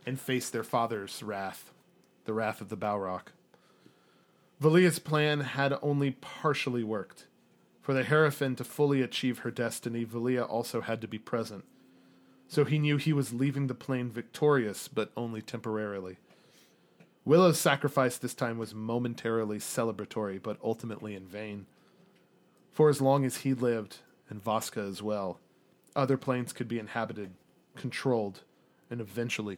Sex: male